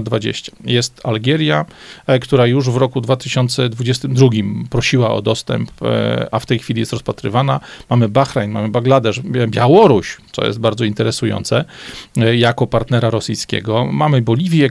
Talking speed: 125 wpm